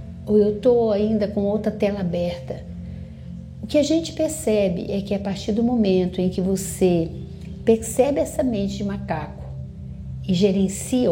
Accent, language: Brazilian, Portuguese